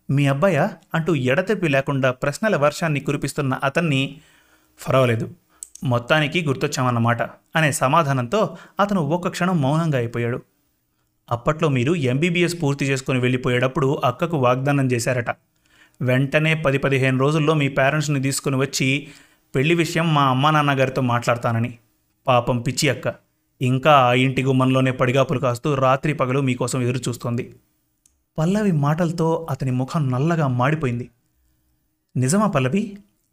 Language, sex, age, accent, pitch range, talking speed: Telugu, male, 30-49, native, 130-170 Hz, 110 wpm